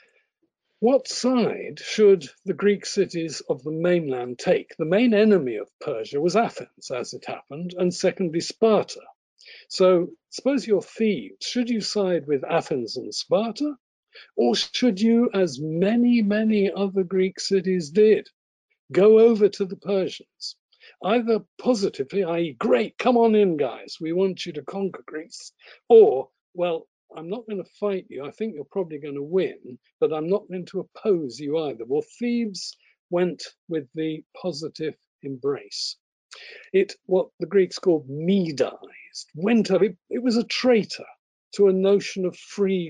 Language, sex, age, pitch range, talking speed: English, male, 60-79, 165-230 Hz, 155 wpm